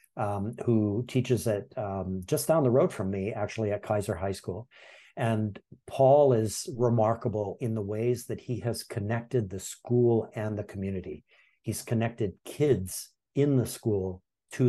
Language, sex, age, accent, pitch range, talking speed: English, male, 50-69, American, 105-125 Hz, 160 wpm